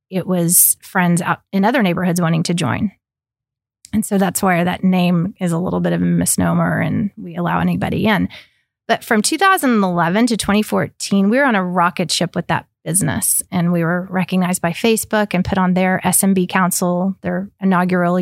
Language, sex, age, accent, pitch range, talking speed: English, female, 30-49, American, 175-195 Hz, 185 wpm